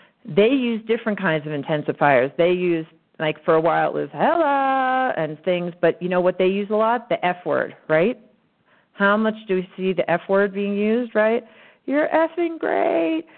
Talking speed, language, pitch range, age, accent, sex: 195 wpm, English, 170-225 Hz, 40-59, American, female